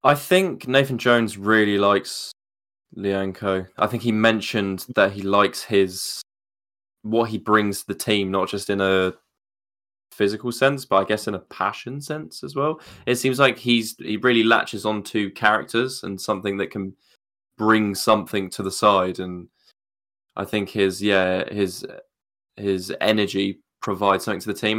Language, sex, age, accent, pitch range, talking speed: English, male, 10-29, British, 100-115 Hz, 160 wpm